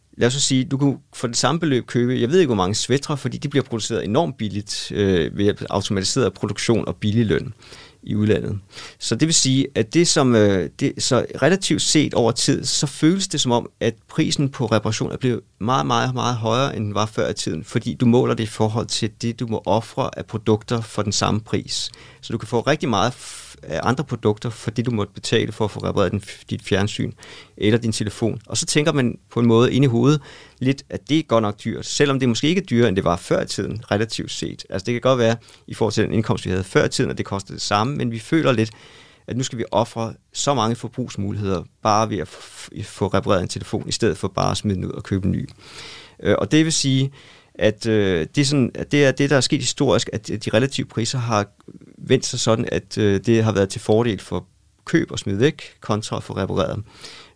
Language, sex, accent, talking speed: Danish, male, native, 230 wpm